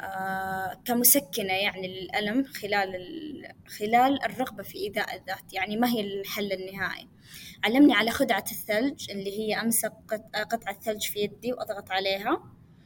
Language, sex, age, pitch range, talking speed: Arabic, female, 20-39, 205-250 Hz, 130 wpm